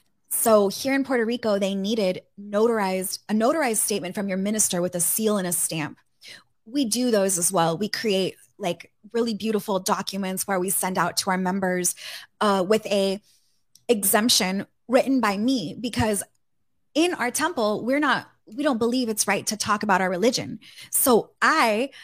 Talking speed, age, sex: 170 wpm, 20-39, female